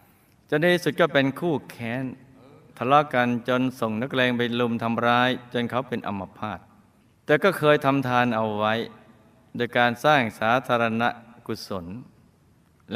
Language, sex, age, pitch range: Thai, male, 20-39, 110-135 Hz